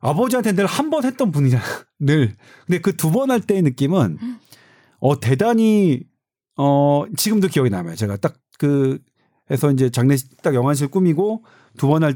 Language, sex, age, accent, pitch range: Korean, male, 40-59, native, 130-190 Hz